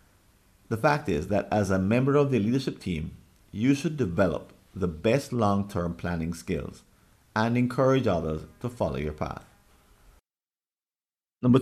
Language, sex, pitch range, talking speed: English, male, 85-115 Hz, 140 wpm